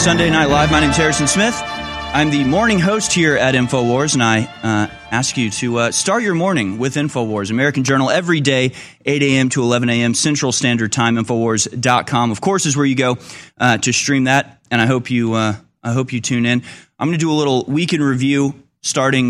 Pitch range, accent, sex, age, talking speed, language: 115-150 Hz, American, male, 30-49, 215 wpm, English